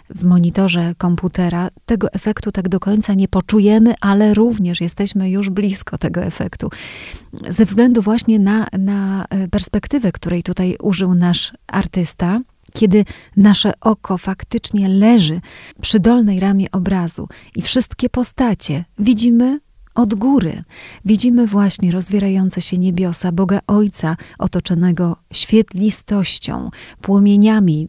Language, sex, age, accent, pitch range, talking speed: Polish, female, 30-49, native, 180-210 Hz, 115 wpm